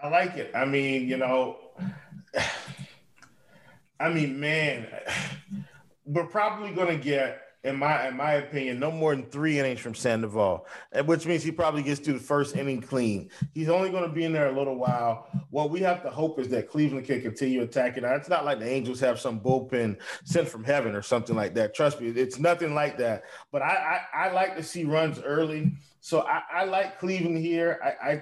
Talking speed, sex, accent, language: 205 wpm, male, American, English